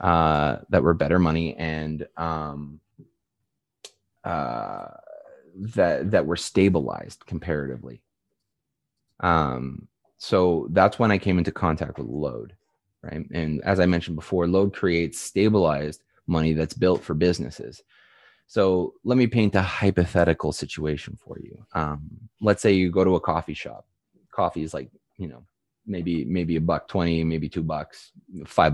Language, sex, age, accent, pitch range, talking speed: English, male, 20-39, American, 80-95 Hz, 145 wpm